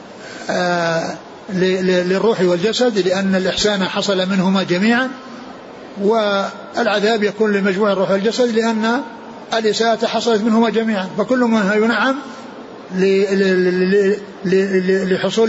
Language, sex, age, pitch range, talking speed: Arabic, male, 60-79, 180-220 Hz, 80 wpm